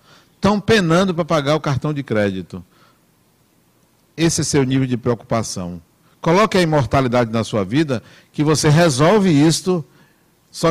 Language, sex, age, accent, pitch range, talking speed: Portuguese, male, 60-79, Brazilian, 105-150 Hz, 140 wpm